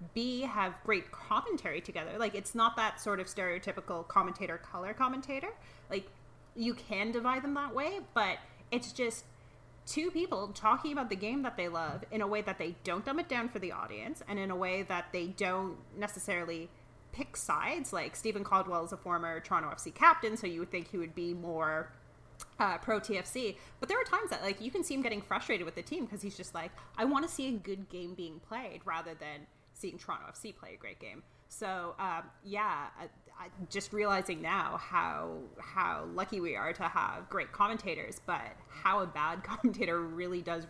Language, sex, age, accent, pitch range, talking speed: English, female, 30-49, American, 175-230 Hz, 200 wpm